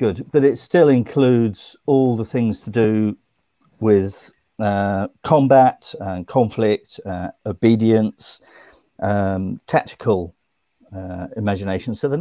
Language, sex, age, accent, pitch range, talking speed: English, male, 50-69, British, 100-130 Hz, 115 wpm